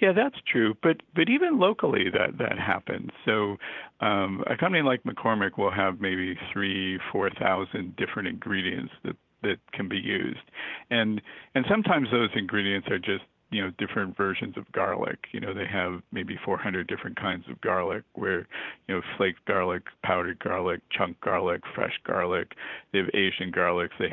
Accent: American